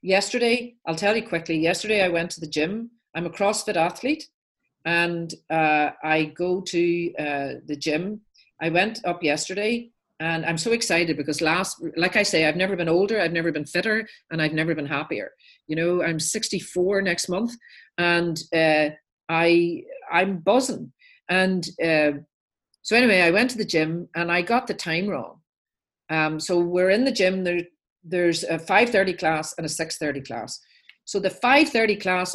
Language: English